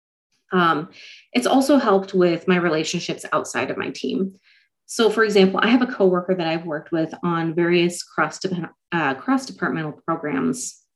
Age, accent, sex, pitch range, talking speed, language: 30-49, American, female, 165-210 Hz, 160 wpm, English